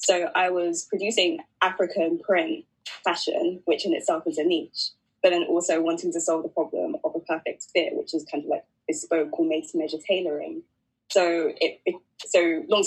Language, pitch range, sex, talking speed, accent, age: English, 165-220 Hz, female, 180 wpm, British, 20-39